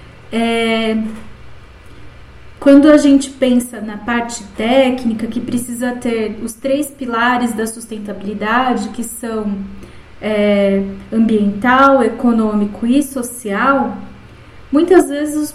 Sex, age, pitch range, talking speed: female, 20-39, 230-280 Hz, 95 wpm